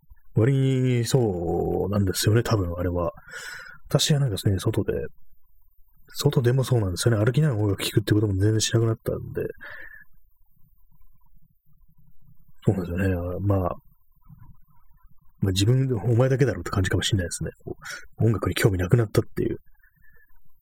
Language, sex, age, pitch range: Japanese, male, 30-49, 95-125 Hz